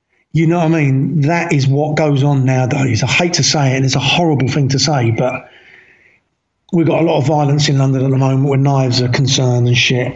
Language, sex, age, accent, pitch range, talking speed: English, male, 50-69, British, 135-160 Hz, 240 wpm